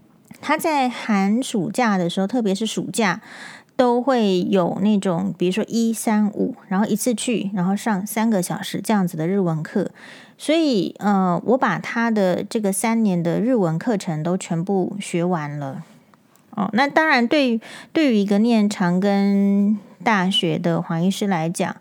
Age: 30-49